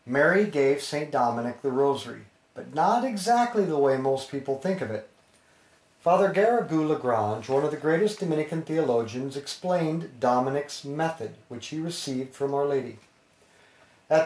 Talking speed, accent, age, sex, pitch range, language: 145 wpm, American, 40-59, male, 135-195 Hz, English